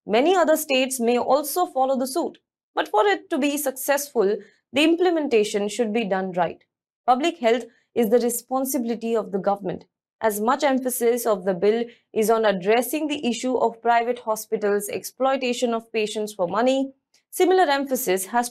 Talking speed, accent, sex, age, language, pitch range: 160 wpm, Indian, female, 20-39, English, 215-280 Hz